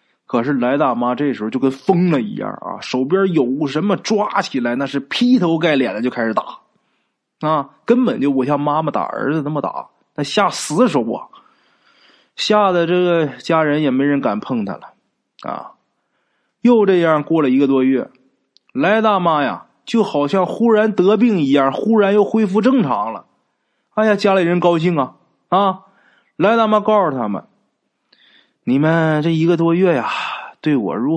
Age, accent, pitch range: 20-39, native, 145-215 Hz